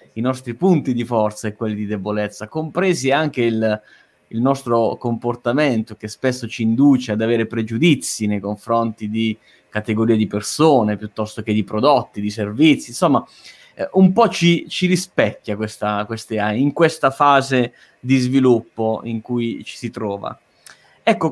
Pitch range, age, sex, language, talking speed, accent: 115-145 Hz, 20-39, male, Italian, 145 wpm, native